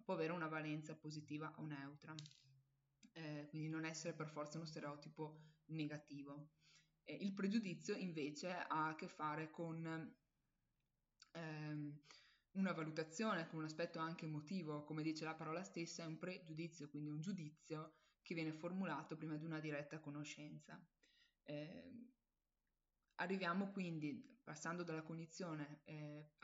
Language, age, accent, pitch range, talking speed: Italian, 20-39, native, 155-175 Hz, 135 wpm